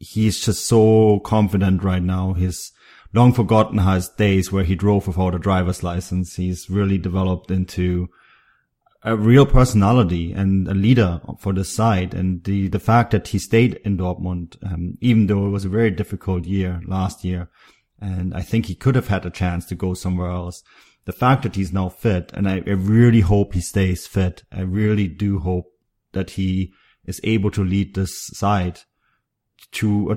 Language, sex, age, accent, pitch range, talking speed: English, male, 30-49, German, 95-110 Hz, 185 wpm